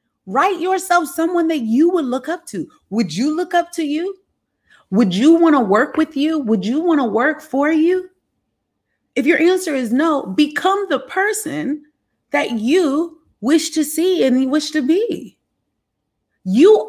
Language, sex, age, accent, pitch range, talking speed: English, female, 30-49, American, 230-345 Hz, 170 wpm